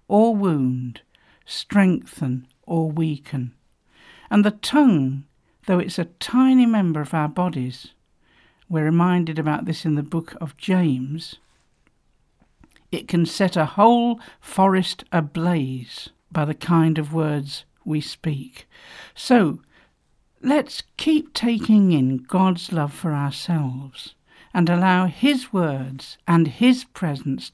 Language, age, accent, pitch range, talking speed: English, 60-79, British, 150-200 Hz, 120 wpm